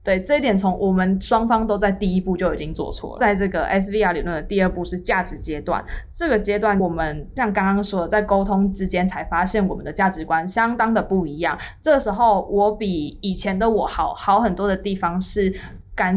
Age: 20-39